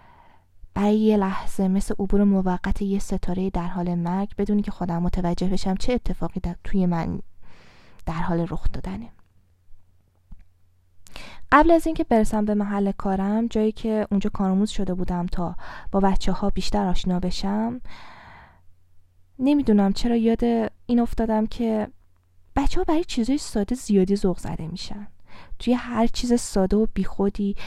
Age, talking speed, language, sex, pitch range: 10-29, 145 wpm, Persian, female, 170-225 Hz